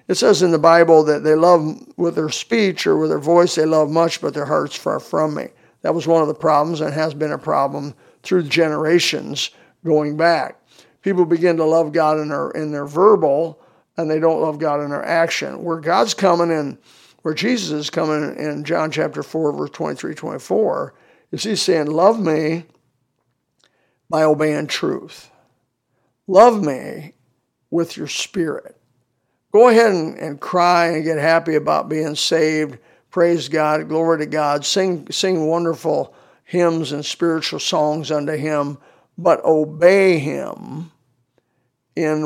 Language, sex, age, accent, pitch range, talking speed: English, male, 50-69, American, 150-170 Hz, 165 wpm